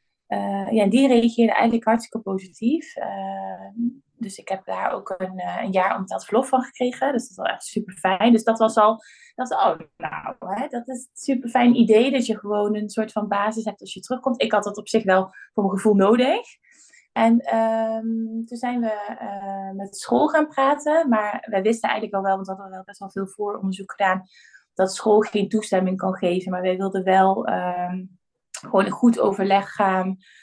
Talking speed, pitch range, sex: 215 wpm, 190-225 Hz, female